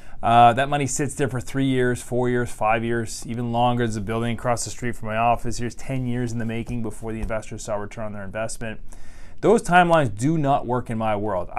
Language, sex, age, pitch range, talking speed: English, male, 20-39, 110-130 Hz, 240 wpm